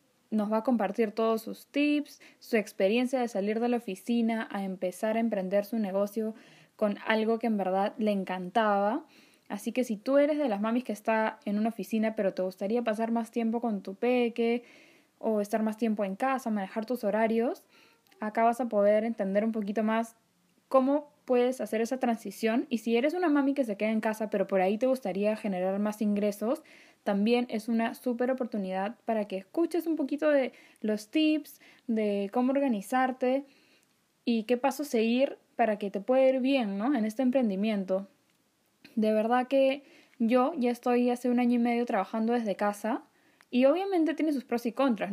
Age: 10-29